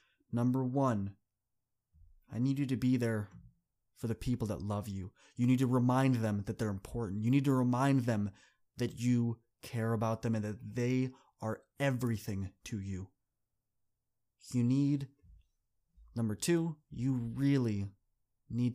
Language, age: English, 20-39